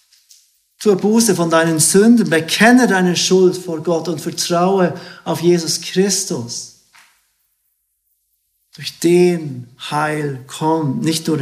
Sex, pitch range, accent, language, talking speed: male, 140-180 Hz, German, German, 110 wpm